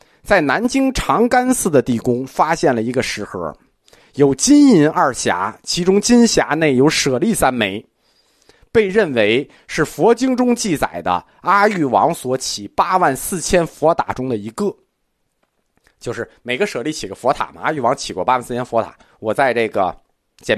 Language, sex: Chinese, male